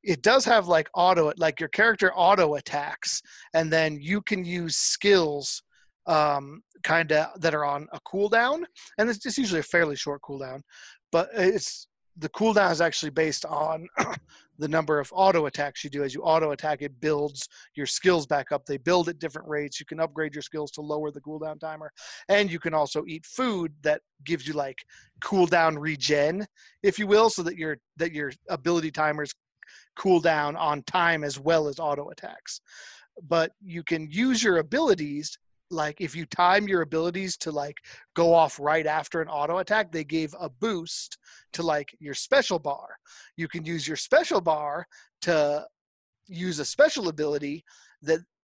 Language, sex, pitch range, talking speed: English, male, 150-185 Hz, 180 wpm